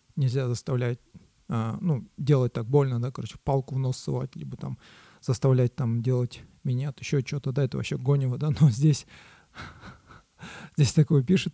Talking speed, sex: 165 wpm, male